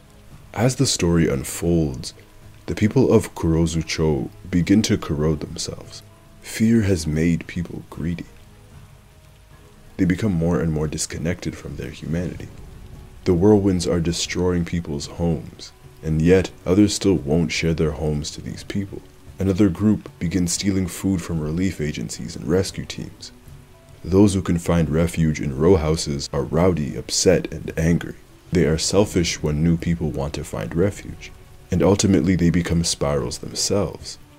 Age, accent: 20-39, American